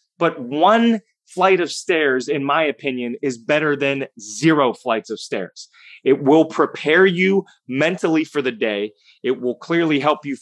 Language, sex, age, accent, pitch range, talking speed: English, male, 30-49, American, 135-190 Hz, 160 wpm